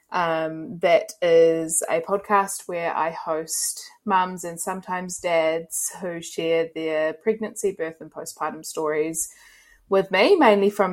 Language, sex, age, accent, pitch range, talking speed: English, female, 20-39, Australian, 165-200 Hz, 130 wpm